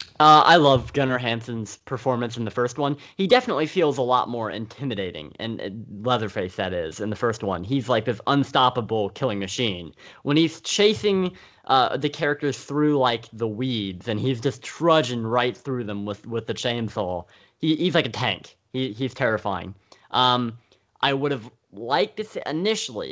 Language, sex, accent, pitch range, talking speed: English, male, American, 110-150 Hz, 175 wpm